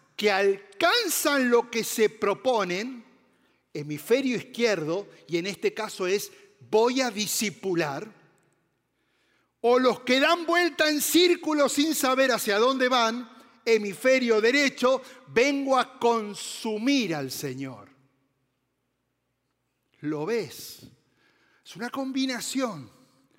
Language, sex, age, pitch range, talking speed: Spanish, male, 50-69, 150-240 Hz, 105 wpm